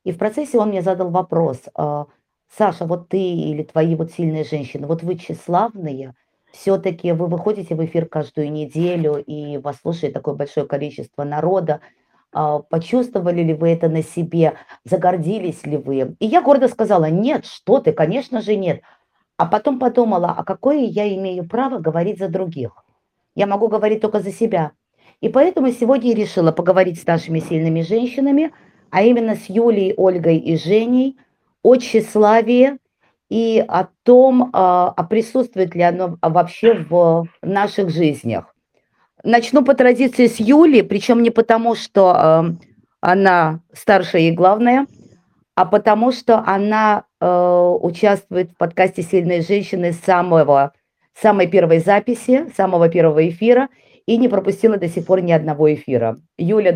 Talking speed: 145 wpm